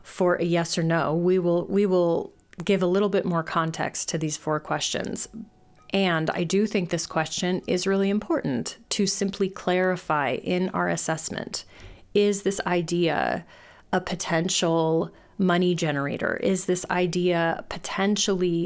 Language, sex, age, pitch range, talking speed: English, female, 30-49, 155-190 Hz, 145 wpm